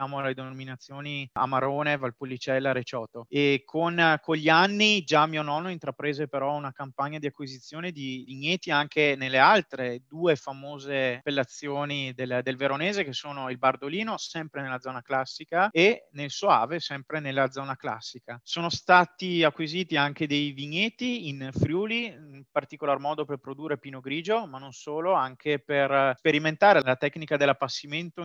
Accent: native